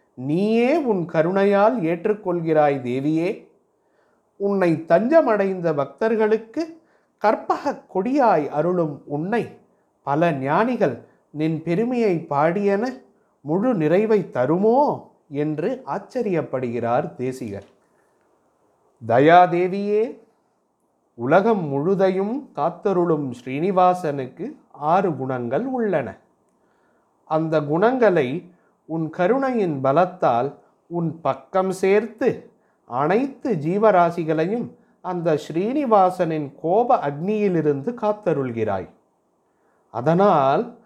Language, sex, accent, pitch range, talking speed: Tamil, male, native, 150-215 Hz, 70 wpm